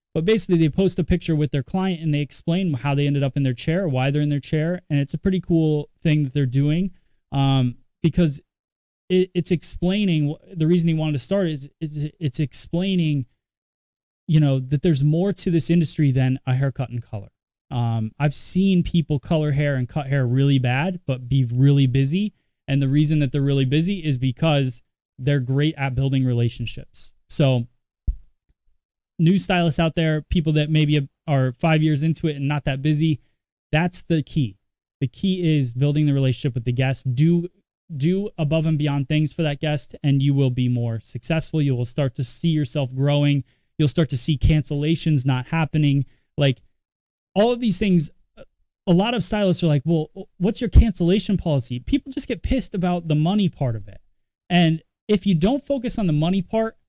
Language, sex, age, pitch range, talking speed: English, male, 20-39, 135-170 Hz, 190 wpm